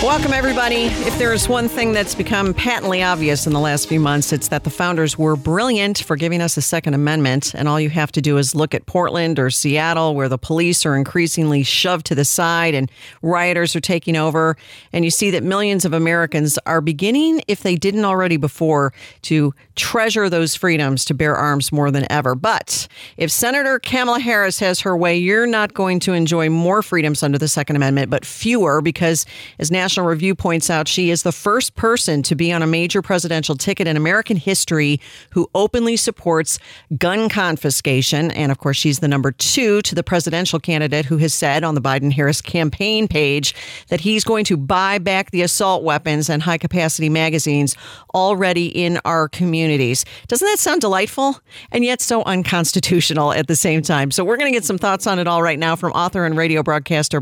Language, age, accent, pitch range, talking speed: English, 40-59, American, 150-190 Hz, 200 wpm